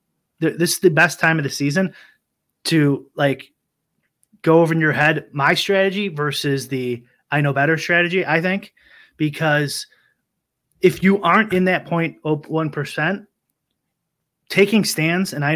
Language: English